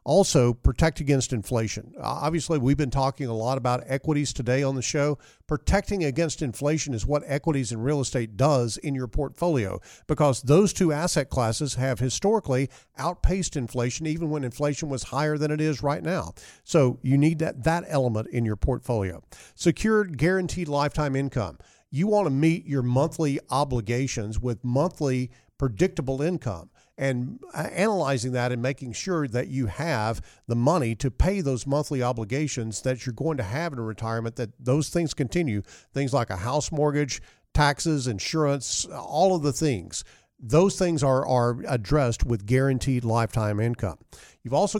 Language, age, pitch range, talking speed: English, 50-69, 120-150 Hz, 165 wpm